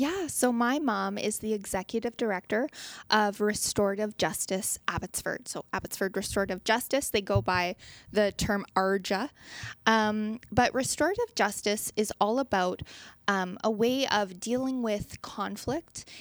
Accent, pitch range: American, 200-245 Hz